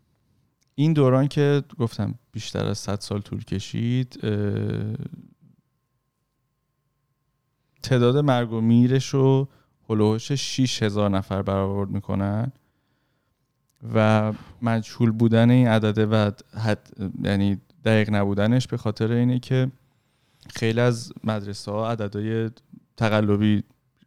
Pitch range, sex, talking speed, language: 100-130 Hz, male, 95 wpm, Persian